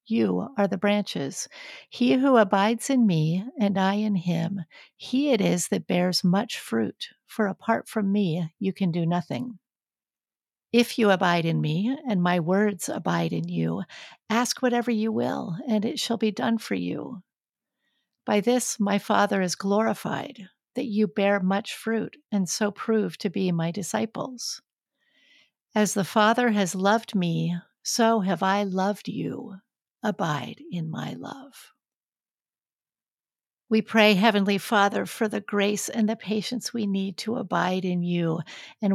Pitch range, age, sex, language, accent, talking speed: 185-225 Hz, 50-69, female, English, American, 155 wpm